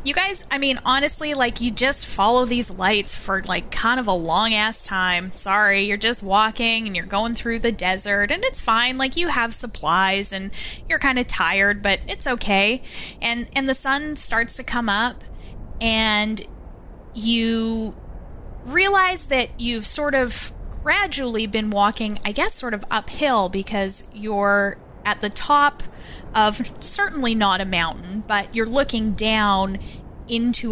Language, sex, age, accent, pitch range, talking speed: English, female, 10-29, American, 205-250 Hz, 160 wpm